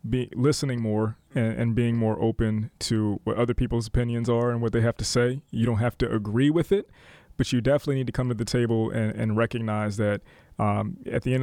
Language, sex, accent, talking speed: English, male, American, 230 wpm